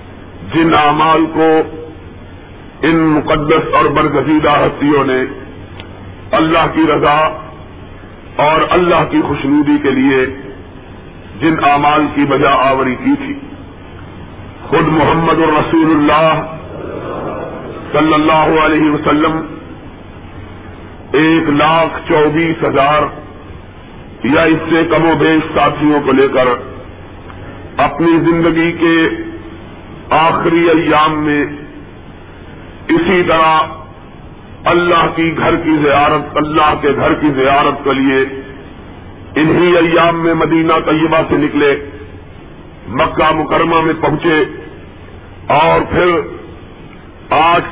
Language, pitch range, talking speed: Urdu, 110-165 Hz, 100 wpm